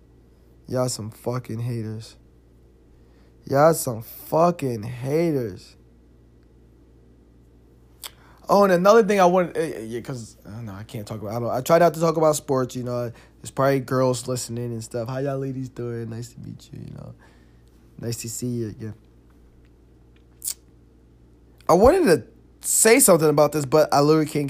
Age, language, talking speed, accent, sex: 20-39, English, 160 wpm, American, male